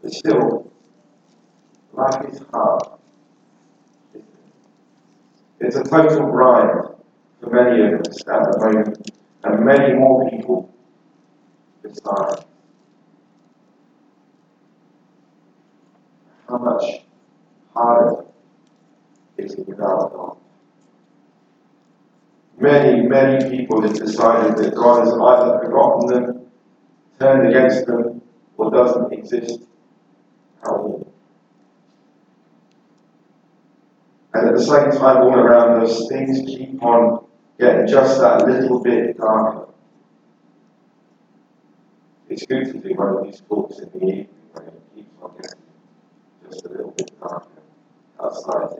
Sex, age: male, 50-69